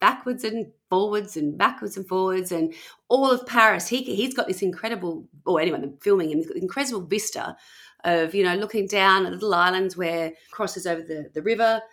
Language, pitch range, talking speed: English, 180-245 Hz, 205 wpm